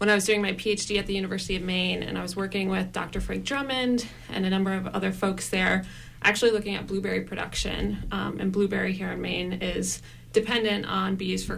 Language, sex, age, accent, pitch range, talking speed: English, female, 20-39, American, 185-205 Hz, 220 wpm